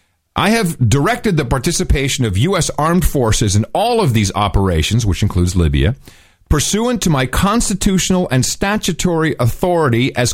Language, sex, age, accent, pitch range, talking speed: English, male, 40-59, American, 115-165 Hz, 145 wpm